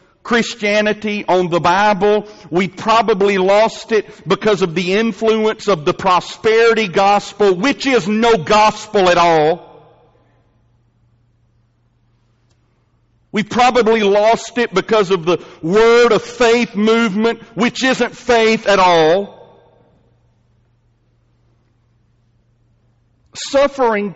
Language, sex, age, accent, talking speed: English, male, 50-69, American, 95 wpm